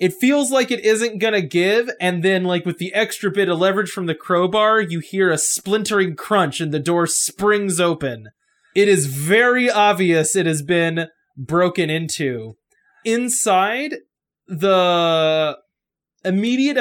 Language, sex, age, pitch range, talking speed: English, male, 20-39, 160-195 Hz, 145 wpm